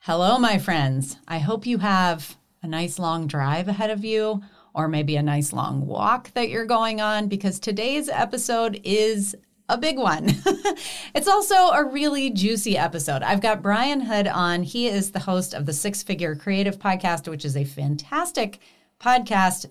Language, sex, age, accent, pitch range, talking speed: English, female, 30-49, American, 155-220 Hz, 175 wpm